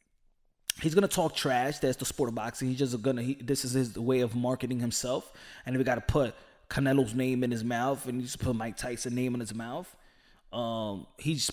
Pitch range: 130-175 Hz